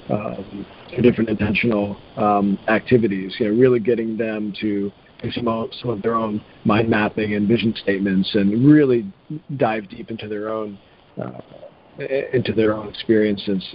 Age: 40-59